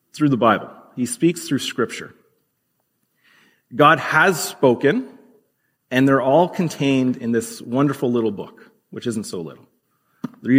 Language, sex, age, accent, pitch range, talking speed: English, male, 40-59, American, 120-155 Hz, 135 wpm